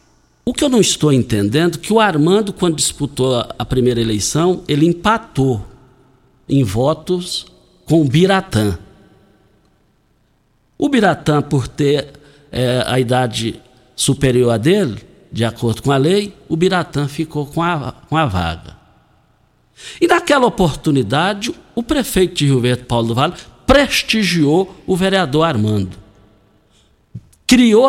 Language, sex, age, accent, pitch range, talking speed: Portuguese, male, 60-79, Brazilian, 125-195 Hz, 125 wpm